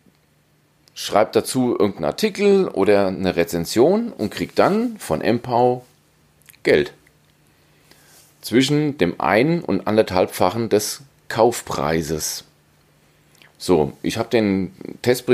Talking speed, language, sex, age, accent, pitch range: 95 wpm, German, male, 40-59, German, 90-140 Hz